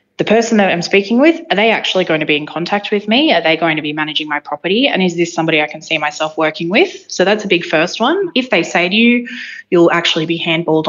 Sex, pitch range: female, 160-215 Hz